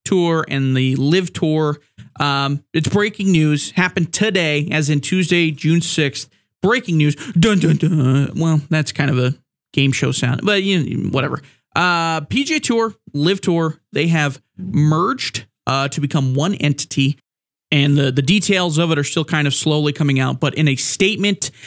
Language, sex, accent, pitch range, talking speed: English, male, American, 140-165 Hz, 170 wpm